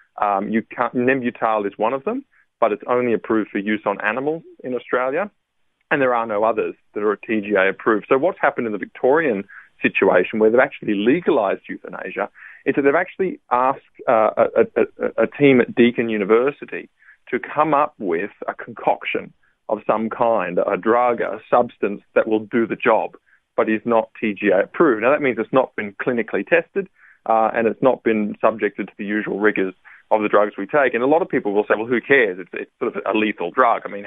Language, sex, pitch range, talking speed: English, male, 105-125 Hz, 205 wpm